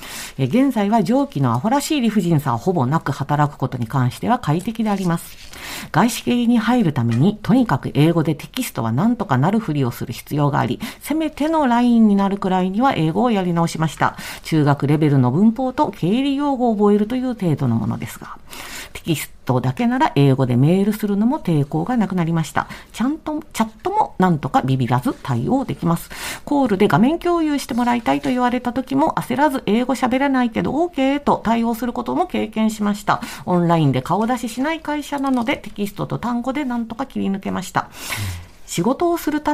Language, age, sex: Japanese, 50-69, female